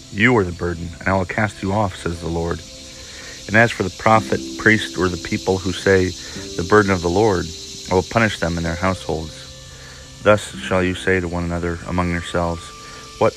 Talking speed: 205 wpm